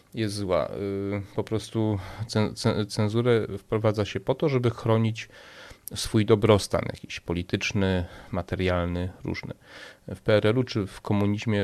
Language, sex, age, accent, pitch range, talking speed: Polish, male, 30-49, native, 95-110 Hz, 115 wpm